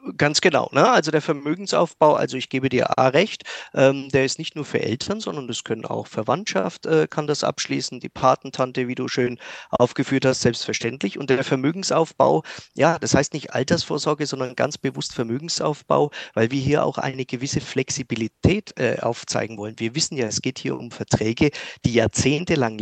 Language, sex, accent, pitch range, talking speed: German, male, German, 120-145 Hz, 180 wpm